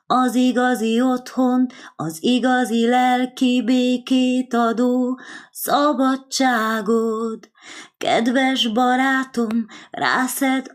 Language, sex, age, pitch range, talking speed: English, female, 20-39, 250-335 Hz, 65 wpm